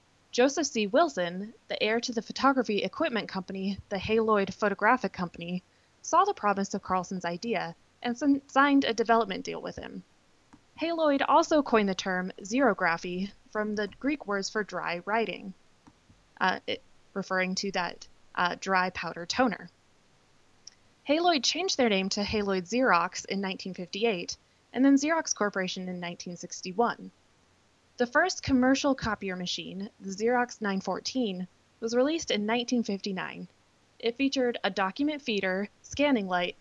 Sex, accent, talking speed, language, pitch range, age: female, American, 135 wpm, English, 185-245 Hz, 20-39